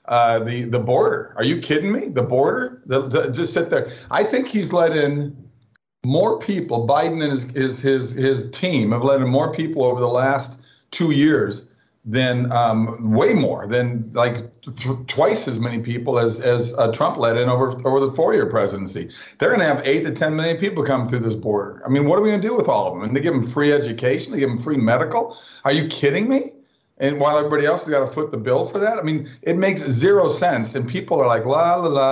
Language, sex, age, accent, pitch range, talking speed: English, male, 50-69, American, 120-145 Hz, 235 wpm